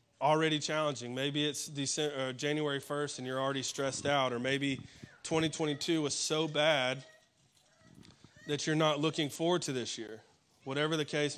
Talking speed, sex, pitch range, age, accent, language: 155 wpm, male, 130-150 Hz, 20-39, American, English